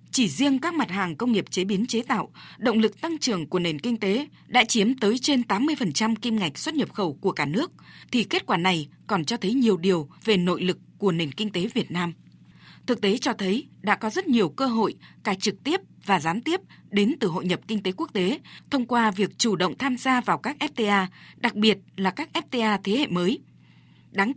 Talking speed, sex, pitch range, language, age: 230 wpm, female, 185-240 Hz, Vietnamese, 20-39